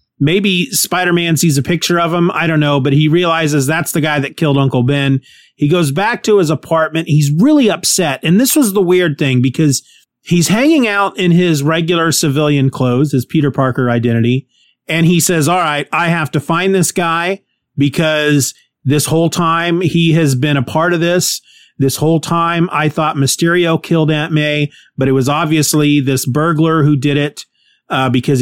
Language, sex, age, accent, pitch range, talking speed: English, male, 30-49, American, 135-165 Hz, 190 wpm